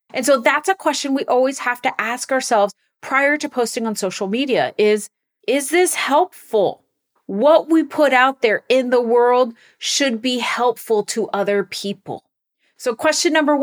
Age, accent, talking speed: 30-49, American, 165 wpm